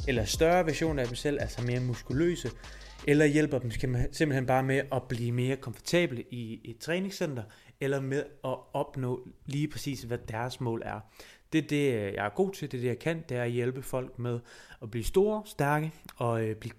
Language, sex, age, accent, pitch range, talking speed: Danish, male, 20-39, native, 120-160 Hz, 200 wpm